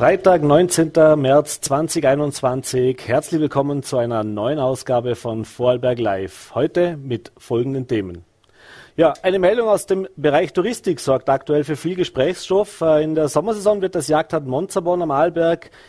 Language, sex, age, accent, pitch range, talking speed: German, male, 40-59, German, 140-170 Hz, 145 wpm